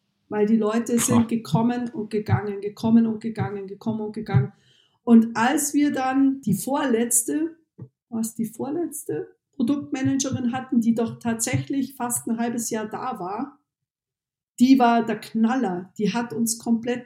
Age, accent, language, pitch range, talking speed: 50-69, German, German, 220-265 Hz, 145 wpm